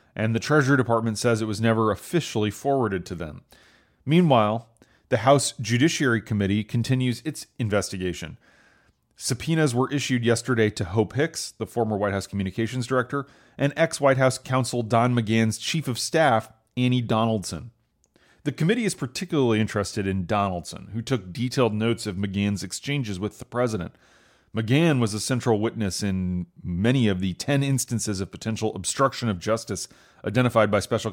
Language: English